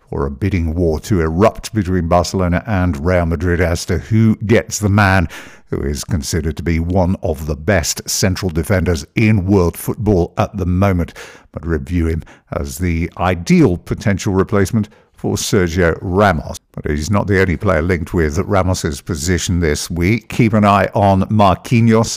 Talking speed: 170 wpm